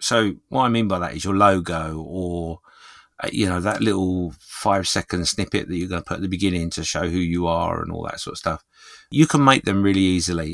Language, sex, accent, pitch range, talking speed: English, male, British, 85-105 Hz, 235 wpm